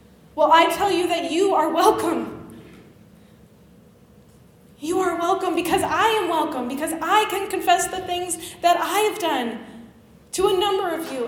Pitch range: 245-320 Hz